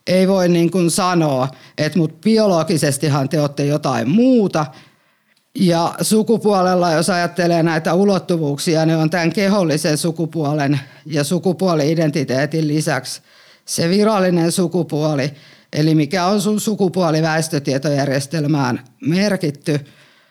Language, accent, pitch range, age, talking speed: Finnish, native, 150-180 Hz, 50-69, 105 wpm